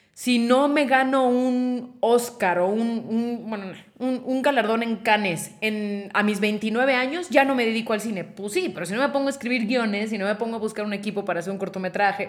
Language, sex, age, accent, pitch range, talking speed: Spanish, female, 30-49, Mexican, 195-245 Hz, 235 wpm